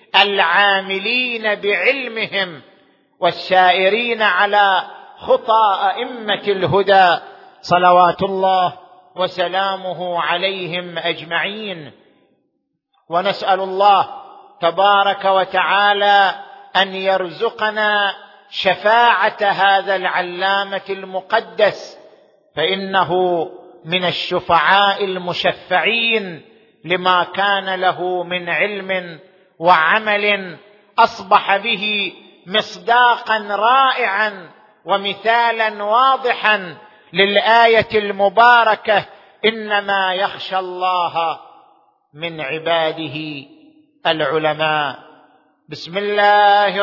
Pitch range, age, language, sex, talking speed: 180-205 Hz, 50-69, Arabic, male, 60 wpm